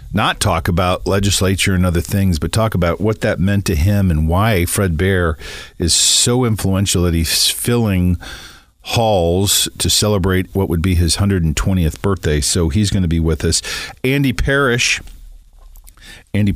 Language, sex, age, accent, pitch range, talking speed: English, male, 50-69, American, 85-110 Hz, 160 wpm